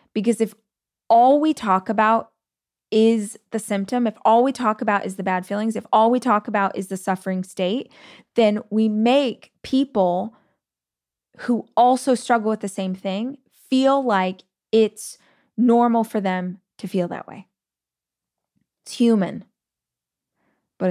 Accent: American